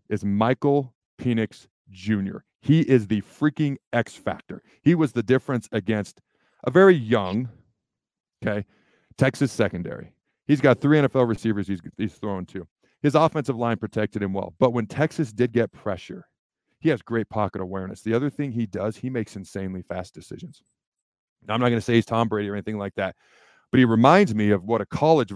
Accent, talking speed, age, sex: American, 180 wpm, 40-59, male